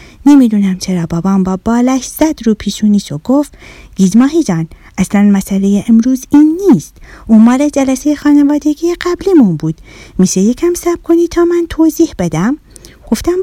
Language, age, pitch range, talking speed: Persian, 30-49, 190-300 Hz, 140 wpm